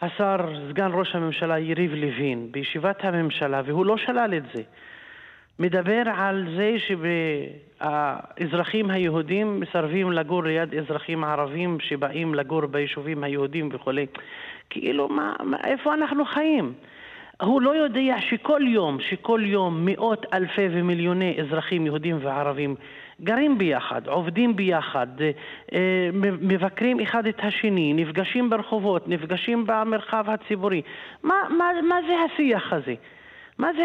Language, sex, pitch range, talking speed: Hebrew, male, 170-250 Hz, 120 wpm